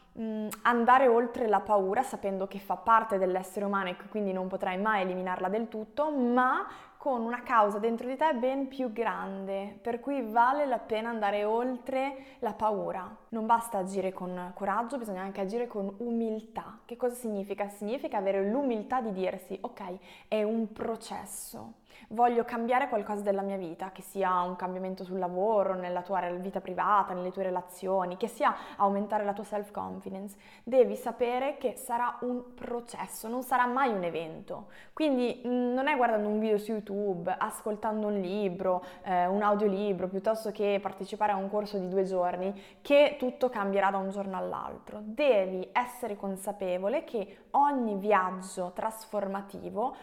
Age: 20-39